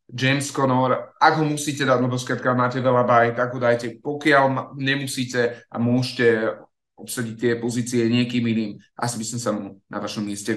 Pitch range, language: 115-130 Hz, Slovak